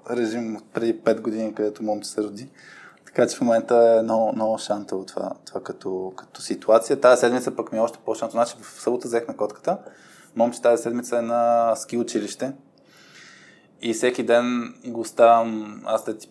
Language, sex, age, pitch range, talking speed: Bulgarian, male, 20-39, 110-125 Hz, 180 wpm